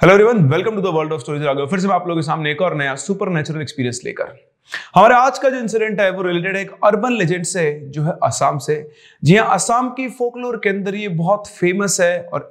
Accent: native